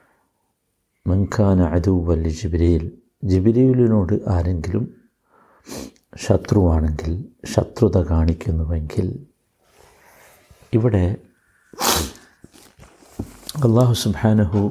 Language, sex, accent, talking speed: Malayalam, male, native, 50 wpm